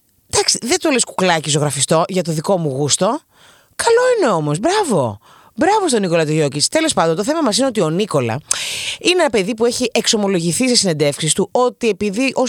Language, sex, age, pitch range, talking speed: Greek, female, 30-49, 165-245 Hz, 190 wpm